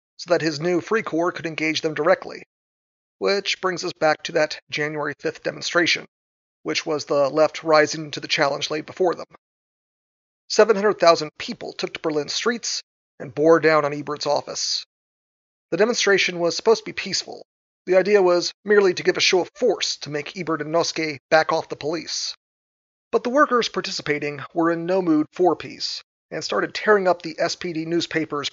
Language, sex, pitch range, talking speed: English, male, 155-195 Hz, 180 wpm